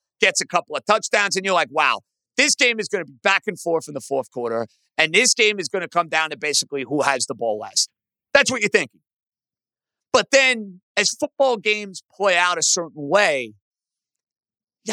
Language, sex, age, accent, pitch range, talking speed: English, male, 50-69, American, 175-275 Hz, 210 wpm